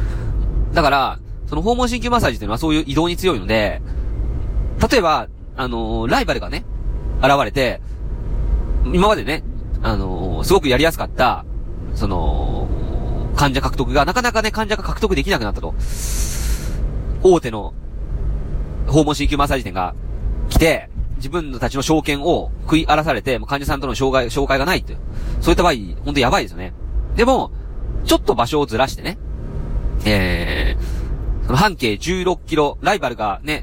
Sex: male